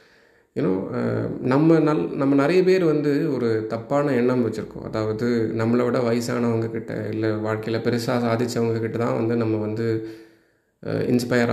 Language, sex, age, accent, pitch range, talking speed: Tamil, male, 20-39, native, 110-135 Hz, 125 wpm